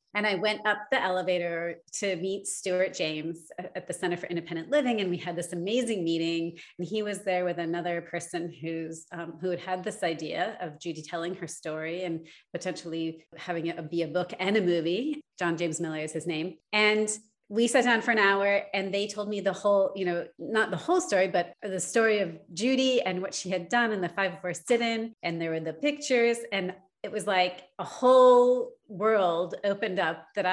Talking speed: 210 wpm